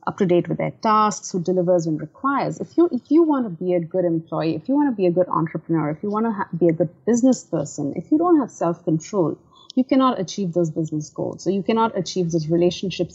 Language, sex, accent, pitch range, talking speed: English, female, Indian, 165-220 Hz, 245 wpm